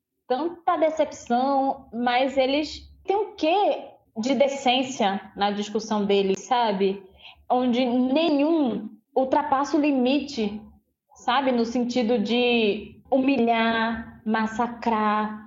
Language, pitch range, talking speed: Portuguese, 225-275 Hz, 95 wpm